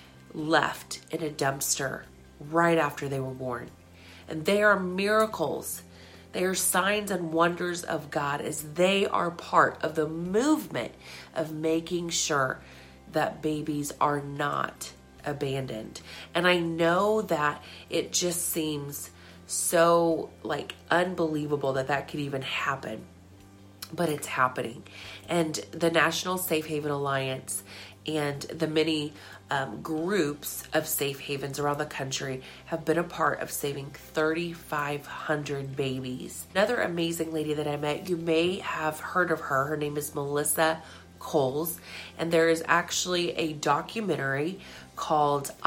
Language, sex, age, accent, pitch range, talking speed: English, female, 30-49, American, 135-165 Hz, 135 wpm